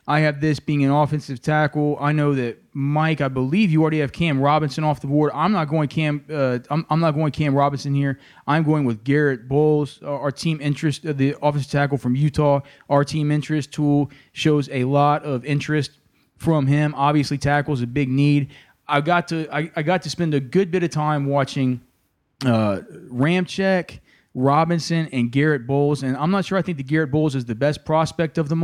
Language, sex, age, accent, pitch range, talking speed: English, male, 20-39, American, 135-150 Hz, 210 wpm